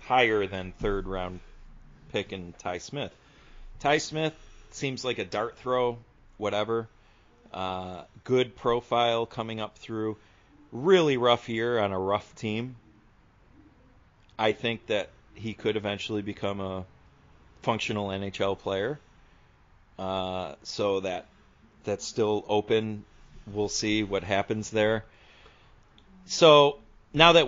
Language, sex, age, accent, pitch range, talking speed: English, male, 40-59, American, 95-120 Hz, 115 wpm